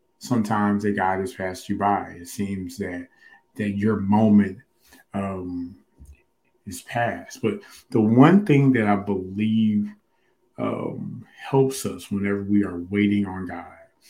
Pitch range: 100-125 Hz